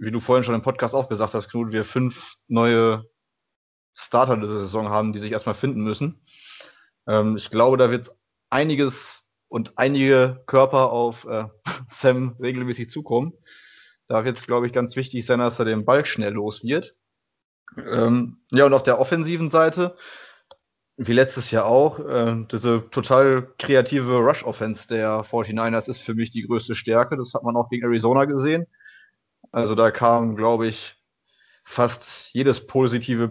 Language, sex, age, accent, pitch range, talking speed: German, male, 20-39, German, 115-135 Hz, 160 wpm